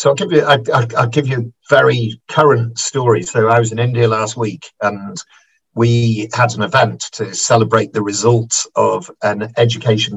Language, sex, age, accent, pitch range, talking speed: English, male, 50-69, British, 110-130 Hz, 175 wpm